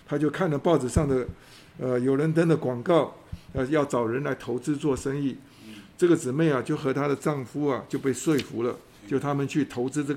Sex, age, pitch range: male, 50-69, 130-165 Hz